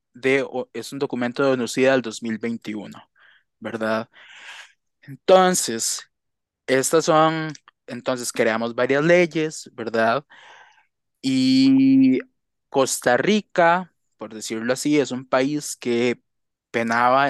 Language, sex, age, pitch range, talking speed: Spanish, male, 20-39, 115-150 Hz, 95 wpm